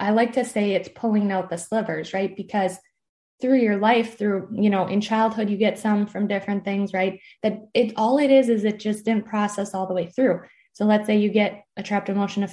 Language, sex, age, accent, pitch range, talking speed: English, female, 10-29, American, 190-215 Hz, 235 wpm